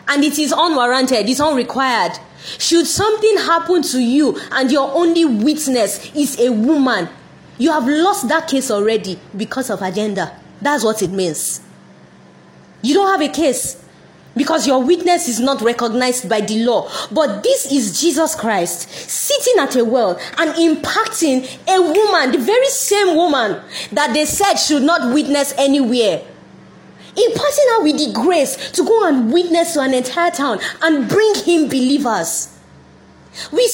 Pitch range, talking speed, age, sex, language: 245-340 Hz, 155 wpm, 20-39, female, English